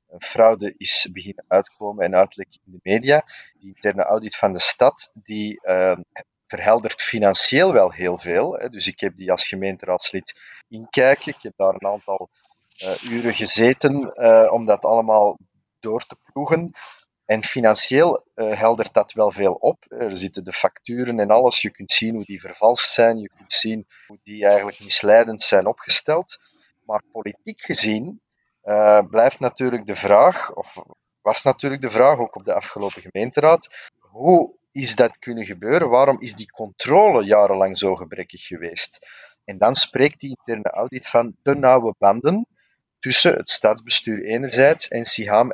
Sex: male